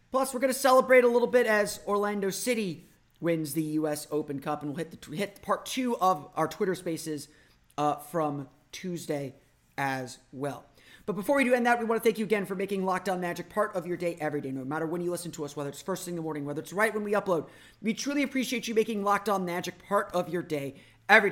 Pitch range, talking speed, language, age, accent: 150-205 Hz, 240 wpm, English, 30-49, American